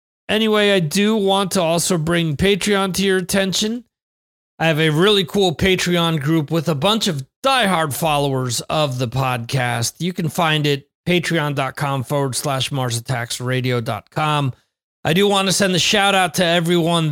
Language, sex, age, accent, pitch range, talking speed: English, male, 40-59, American, 135-180 Hz, 160 wpm